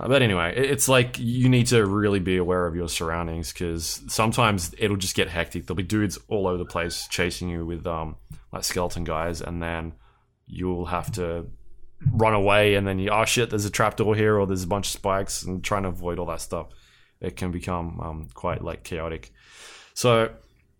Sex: male